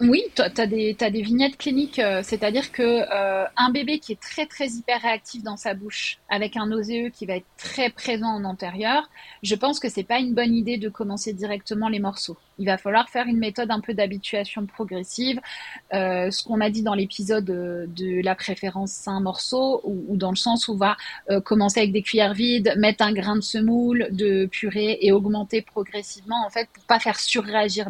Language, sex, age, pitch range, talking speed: French, female, 30-49, 195-235 Hz, 210 wpm